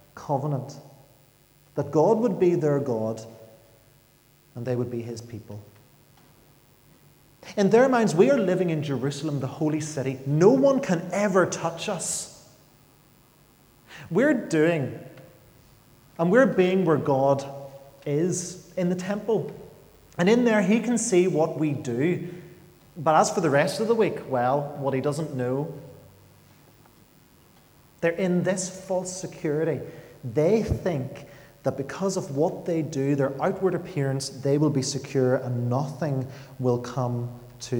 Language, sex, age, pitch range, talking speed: English, male, 30-49, 125-170 Hz, 140 wpm